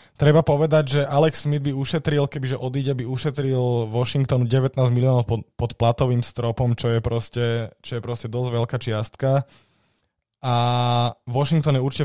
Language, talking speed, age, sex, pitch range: Slovak, 155 wpm, 20-39, male, 115-130 Hz